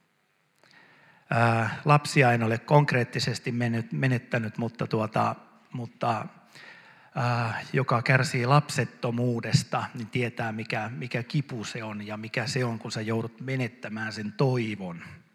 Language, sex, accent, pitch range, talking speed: Finnish, male, native, 115-145 Hz, 115 wpm